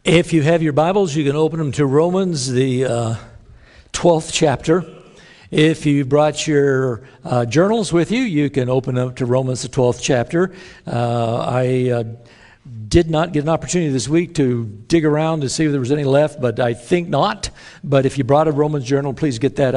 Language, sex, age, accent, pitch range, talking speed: English, male, 60-79, American, 130-160 Hz, 200 wpm